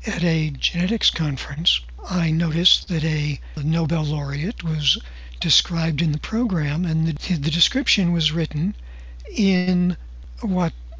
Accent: American